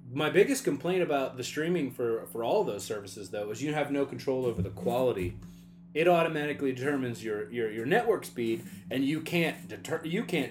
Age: 30-49